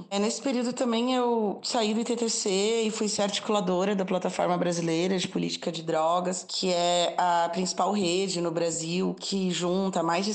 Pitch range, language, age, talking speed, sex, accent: 175-200 Hz, Portuguese, 20-39, 170 wpm, female, Brazilian